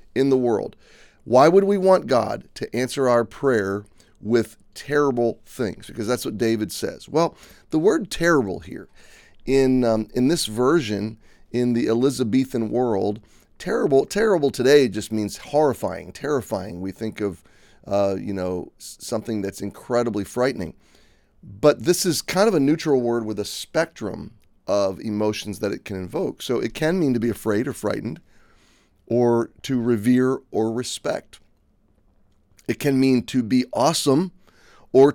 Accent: American